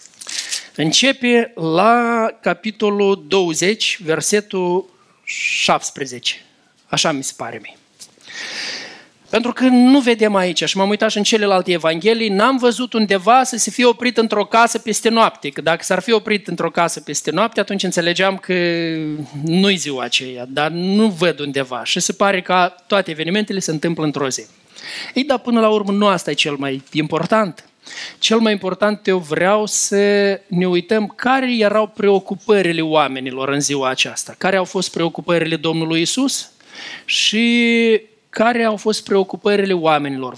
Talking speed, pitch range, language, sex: 150 wpm, 160-220 Hz, Romanian, male